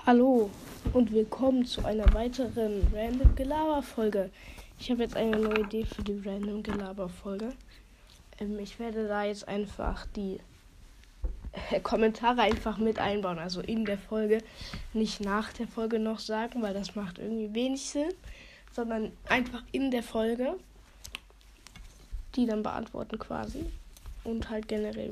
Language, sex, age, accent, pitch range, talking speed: German, female, 10-29, German, 215-245 Hz, 145 wpm